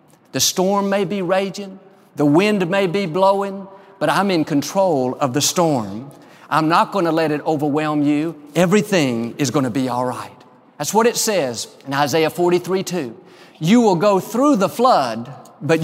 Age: 50-69